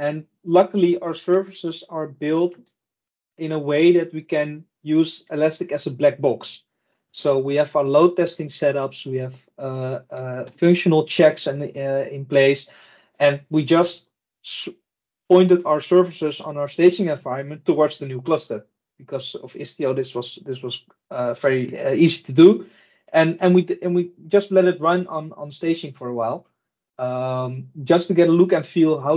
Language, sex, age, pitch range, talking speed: English, male, 30-49, 140-175 Hz, 180 wpm